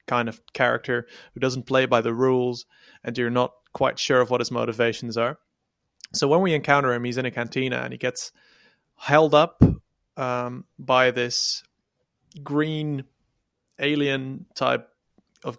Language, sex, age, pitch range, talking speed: English, male, 20-39, 120-145 Hz, 155 wpm